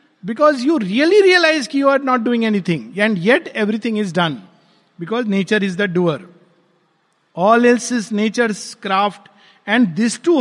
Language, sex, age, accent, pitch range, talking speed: Hindi, male, 50-69, native, 170-235 Hz, 160 wpm